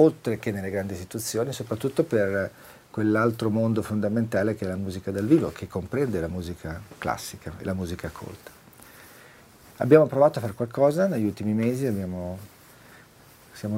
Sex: male